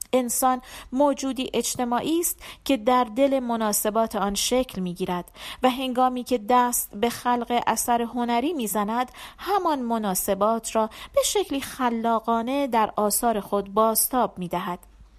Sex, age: female, 40-59